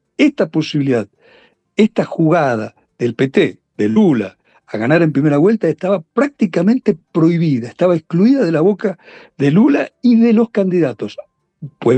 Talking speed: 140 wpm